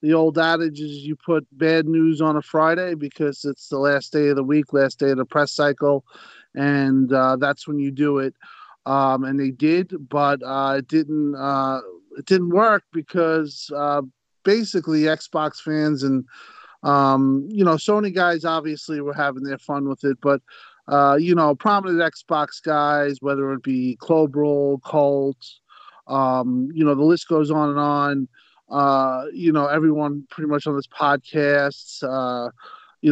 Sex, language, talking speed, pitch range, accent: male, English, 170 wpm, 135-160 Hz, American